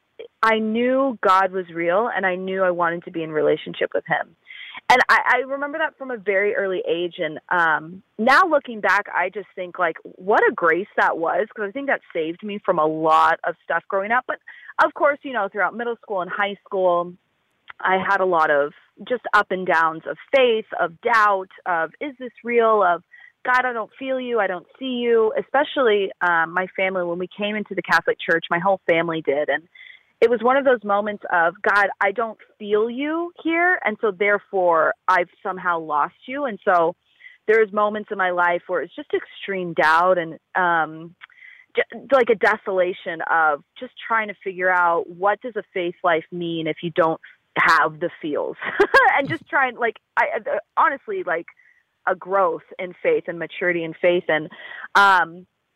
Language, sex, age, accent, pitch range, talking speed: English, female, 30-49, American, 175-255 Hz, 195 wpm